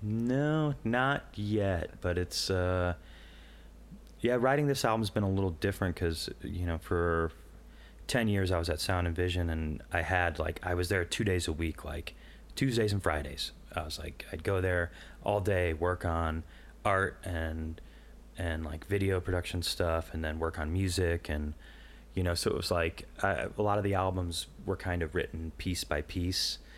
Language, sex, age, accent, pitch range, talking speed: English, male, 30-49, American, 80-95 Hz, 185 wpm